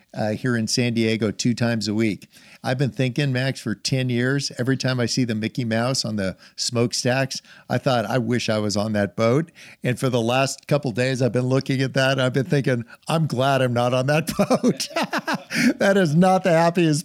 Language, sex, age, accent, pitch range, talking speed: English, male, 50-69, American, 110-140 Hz, 215 wpm